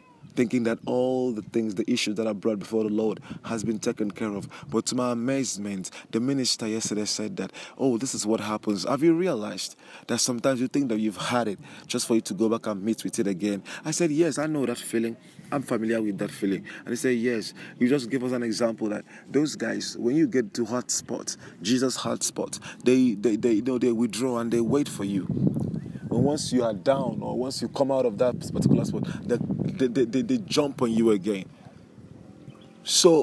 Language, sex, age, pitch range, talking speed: English, male, 30-49, 110-140 Hz, 225 wpm